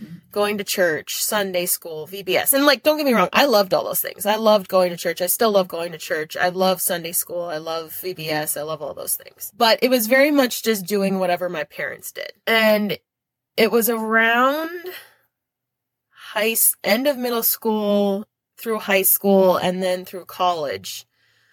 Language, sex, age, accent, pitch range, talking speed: English, female, 20-39, American, 180-220 Hz, 185 wpm